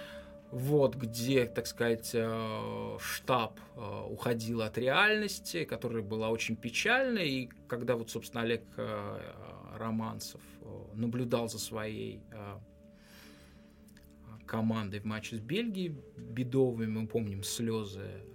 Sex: male